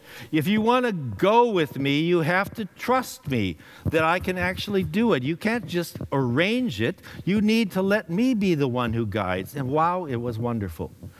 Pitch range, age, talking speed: 120-175 Hz, 60-79, 205 wpm